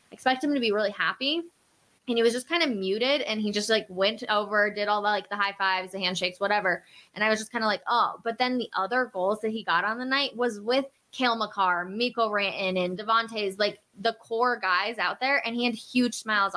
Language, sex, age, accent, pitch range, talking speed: English, female, 20-39, American, 195-255 Hz, 245 wpm